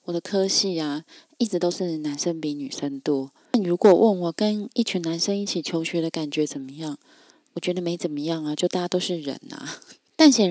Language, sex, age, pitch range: Chinese, female, 20-39, 165-220 Hz